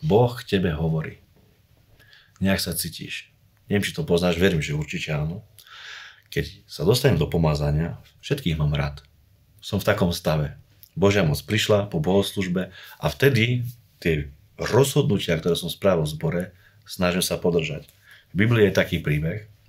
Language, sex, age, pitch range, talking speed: Slovak, male, 40-59, 85-105 Hz, 145 wpm